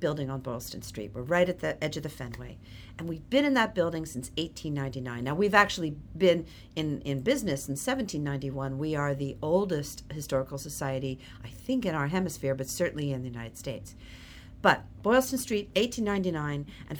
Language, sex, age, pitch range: English, female, 50-69, 135-195 Hz